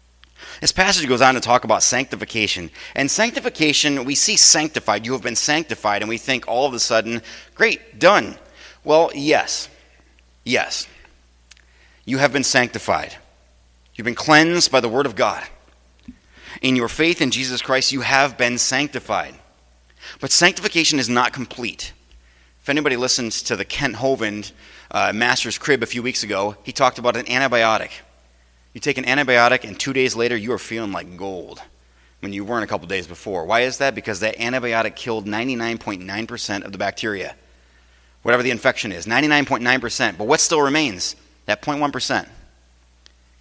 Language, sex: English, male